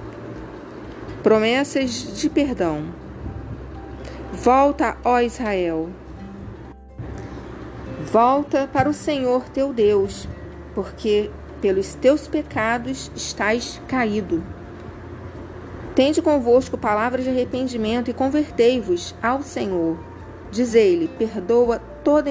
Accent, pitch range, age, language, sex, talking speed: Brazilian, 195-265 Hz, 40-59, Portuguese, female, 85 wpm